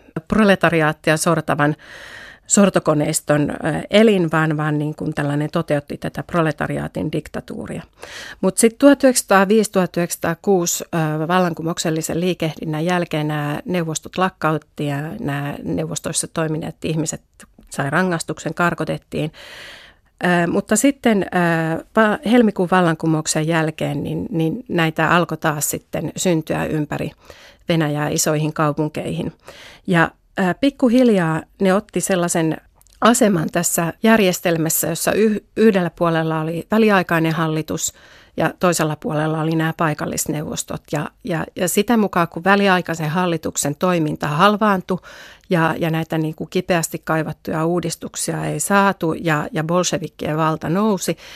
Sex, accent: female, native